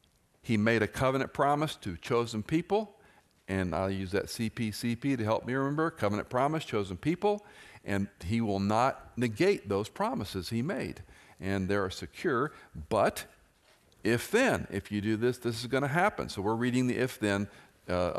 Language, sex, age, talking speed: English, male, 50-69, 170 wpm